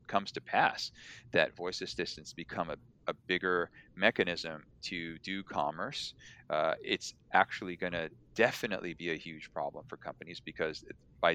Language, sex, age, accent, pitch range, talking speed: English, male, 30-49, American, 85-105 Hz, 150 wpm